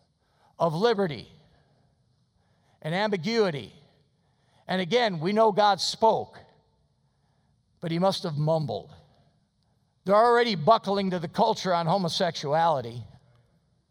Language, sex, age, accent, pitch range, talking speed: English, male, 50-69, American, 170-225 Hz, 100 wpm